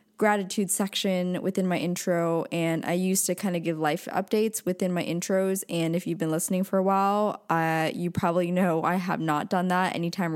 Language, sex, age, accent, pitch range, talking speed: English, female, 20-39, American, 170-205 Hz, 205 wpm